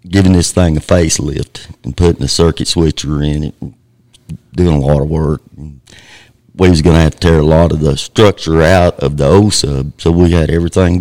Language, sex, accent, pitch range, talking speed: English, male, American, 80-100 Hz, 215 wpm